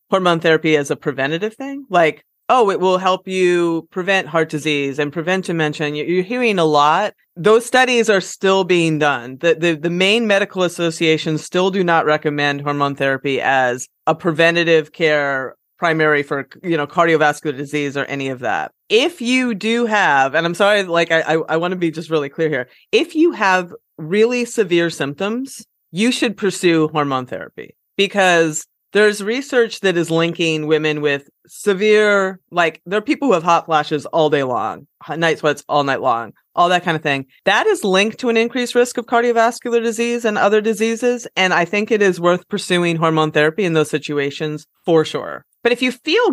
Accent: American